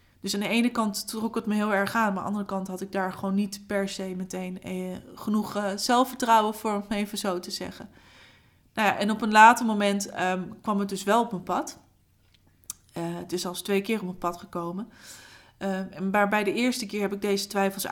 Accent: Dutch